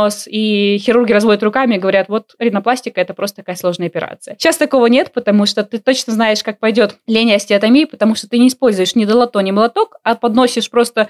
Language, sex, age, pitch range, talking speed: Russian, female, 20-39, 200-255 Hz, 200 wpm